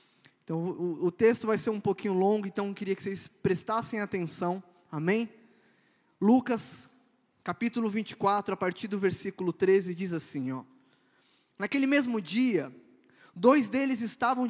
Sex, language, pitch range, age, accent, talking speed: male, Portuguese, 190-255 Hz, 20-39, Brazilian, 140 wpm